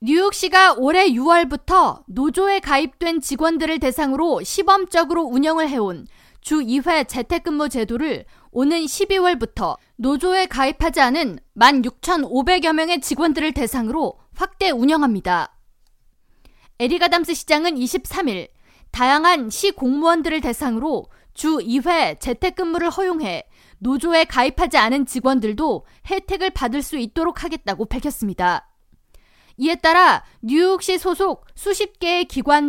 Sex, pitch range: female, 265-345 Hz